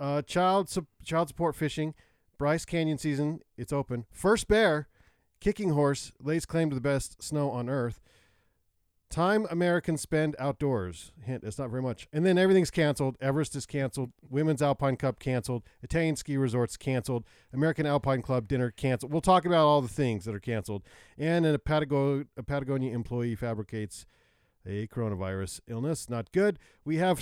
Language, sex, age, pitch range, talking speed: English, male, 40-59, 125-165 Hz, 170 wpm